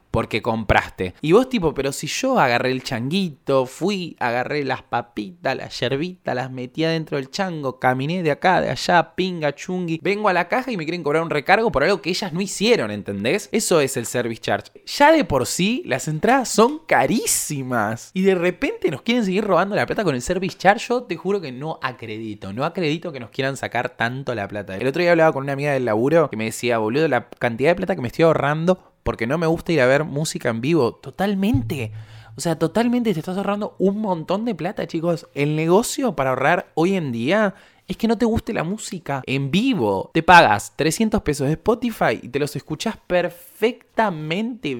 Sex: male